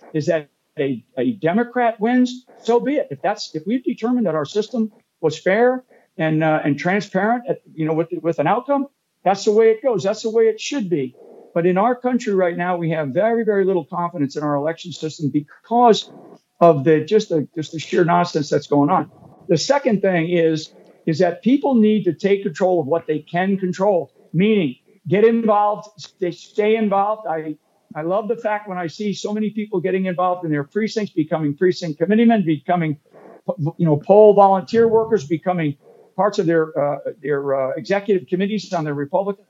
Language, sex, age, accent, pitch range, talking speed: English, male, 60-79, American, 165-215 Hz, 195 wpm